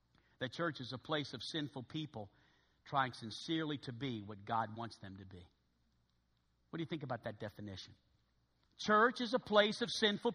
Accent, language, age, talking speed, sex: American, English, 50-69, 180 wpm, male